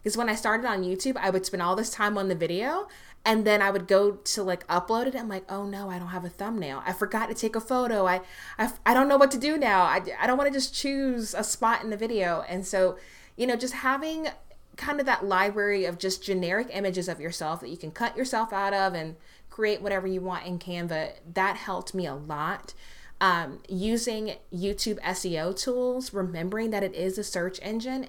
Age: 20-39